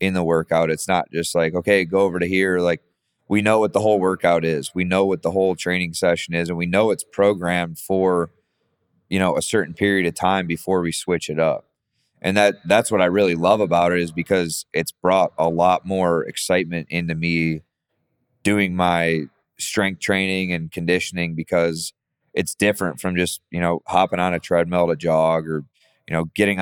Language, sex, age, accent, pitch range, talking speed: English, male, 20-39, American, 85-95 Hz, 200 wpm